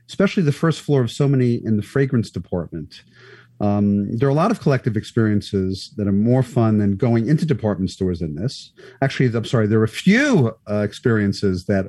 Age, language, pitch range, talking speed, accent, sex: 50-69, English, 100-135 Hz, 195 wpm, American, male